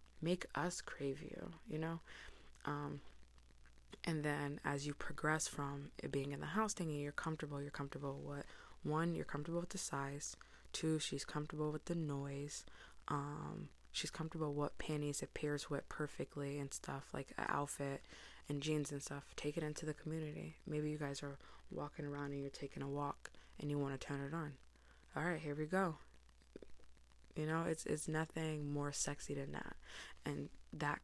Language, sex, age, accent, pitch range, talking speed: English, female, 20-39, American, 135-155 Hz, 180 wpm